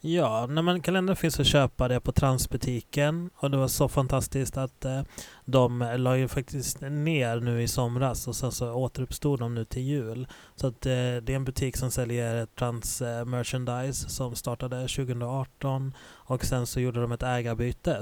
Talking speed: 165 wpm